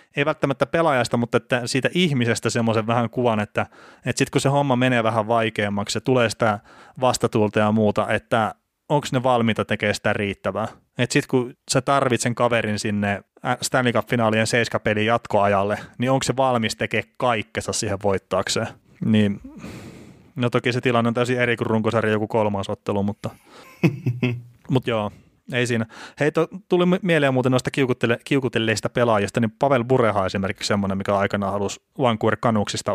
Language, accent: Finnish, native